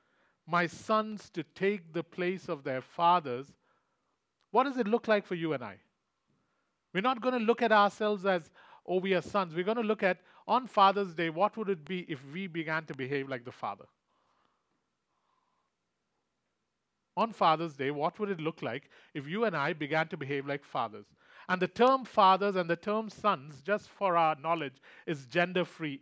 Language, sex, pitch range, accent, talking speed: English, male, 155-200 Hz, Indian, 185 wpm